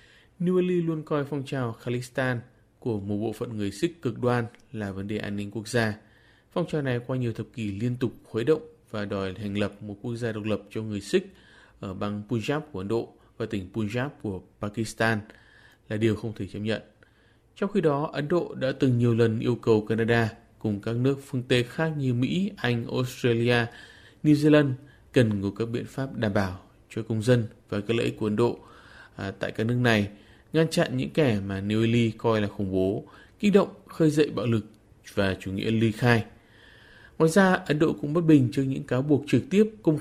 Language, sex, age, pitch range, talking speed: Vietnamese, male, 20-39, 105-135 Hz, 215 wpm